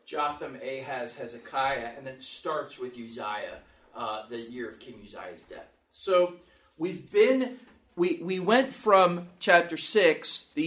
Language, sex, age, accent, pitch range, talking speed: English, male, 30-49, American, 150-190 Hz, 140 wpm